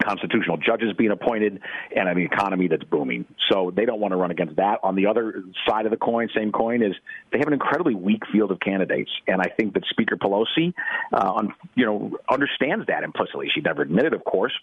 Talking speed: 215 wpm